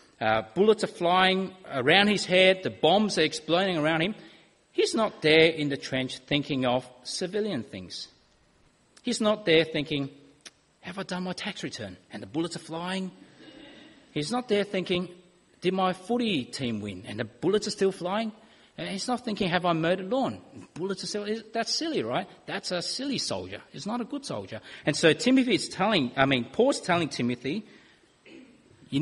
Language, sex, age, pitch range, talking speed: English, male, 30-49, 140-210 Hz, 180 wpm